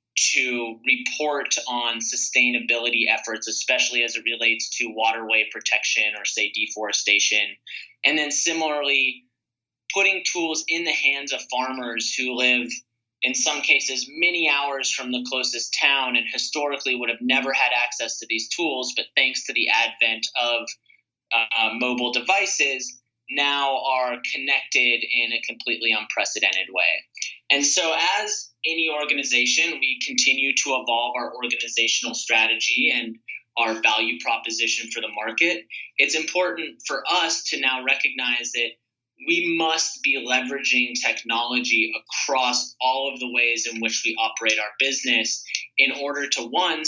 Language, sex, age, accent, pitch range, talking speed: English, male, 20-39, American, 115-145 Hz, 140 wpm